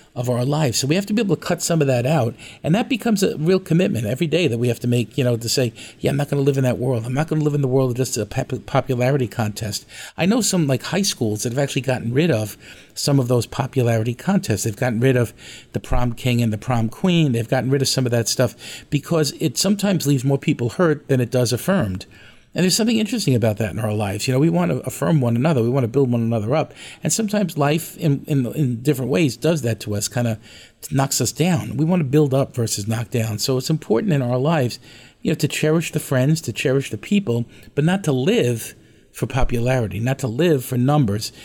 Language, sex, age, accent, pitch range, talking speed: English, male, 50-69, American, 120-155 Hz, 255 wpm